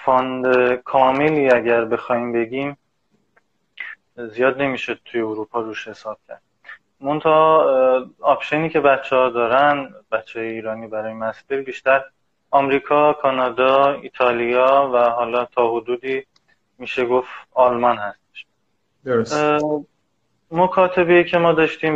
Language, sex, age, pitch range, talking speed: Persian, male, 20-39, 115-140 Hz, 105 wpm